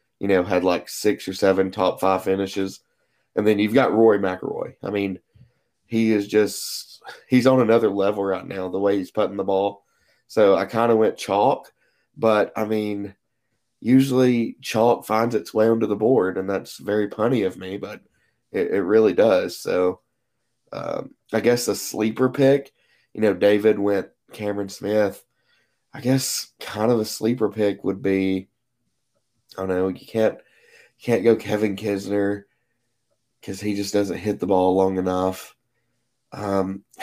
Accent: American